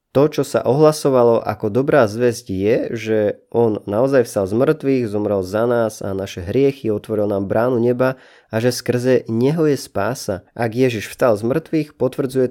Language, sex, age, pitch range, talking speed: Slovak, male, 20-39, 100-125 Hz, 175 wpm